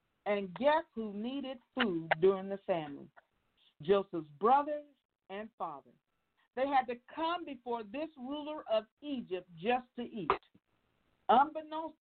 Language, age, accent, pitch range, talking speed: English, 50-69, American, 230-310 Hz, 125 wpm